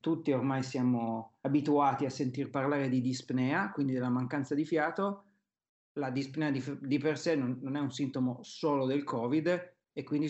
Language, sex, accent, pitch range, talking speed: Italian, male, native, 125-140 Hz, 175 wpm